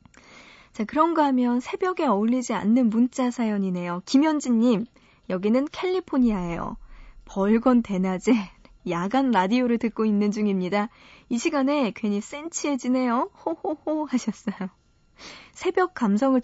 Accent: native